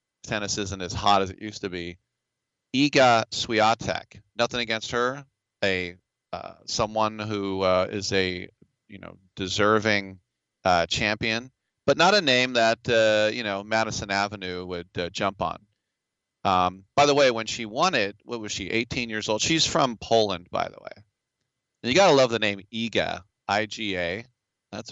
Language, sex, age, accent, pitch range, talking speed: English, male, 40-59, American, 95-125 Hz, 165 wpm